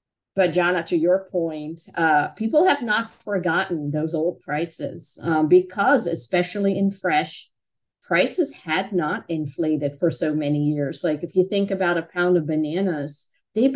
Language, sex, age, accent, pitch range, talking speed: English, female, 50-69, American, 155-185 Hz, 155 wpm